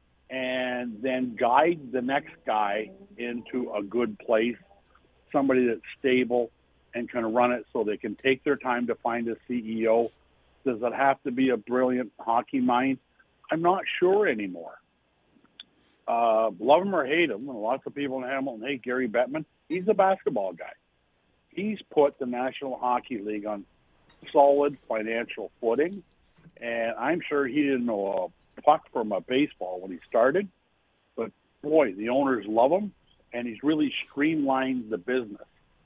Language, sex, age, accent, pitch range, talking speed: English, male, 60-79, American, 115-135 Hz, 160 wpm